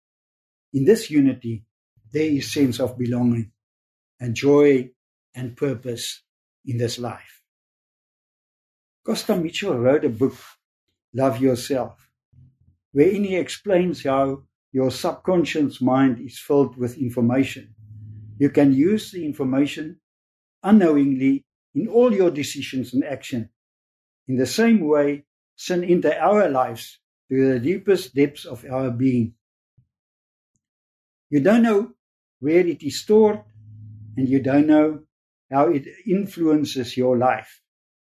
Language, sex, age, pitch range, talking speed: English, male, 60-79, 120-150 Hz, 120 wpm